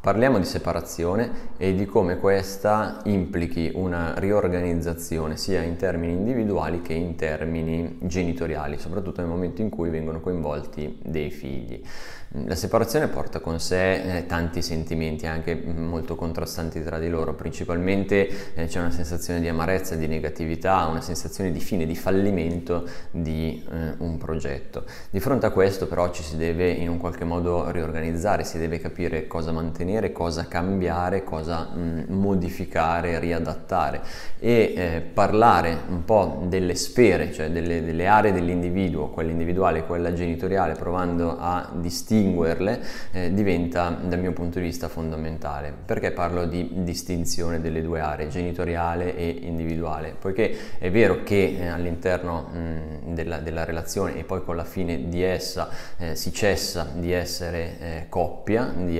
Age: 20-39